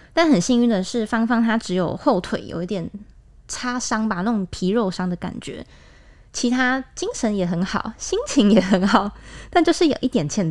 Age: 20-39